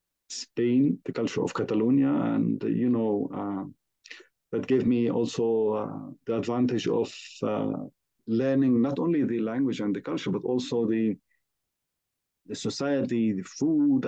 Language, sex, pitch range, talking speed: English, male, 115-160 Hz, 140 wpm